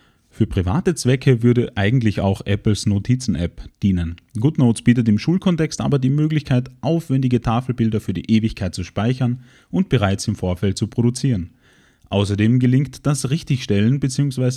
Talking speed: 140 wpm